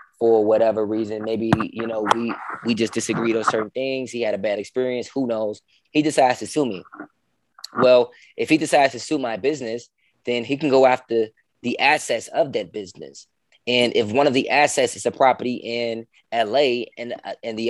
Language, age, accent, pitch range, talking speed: English, 20-39, American, 115-135 Hz, 195 wpm